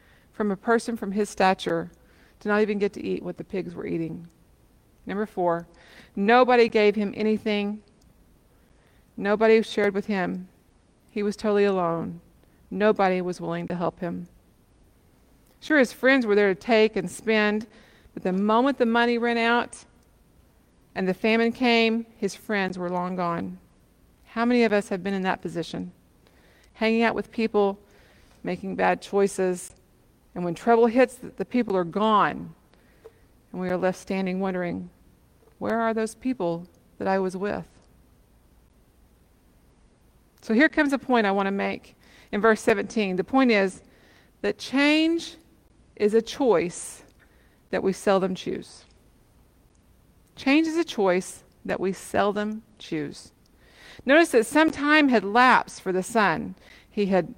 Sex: female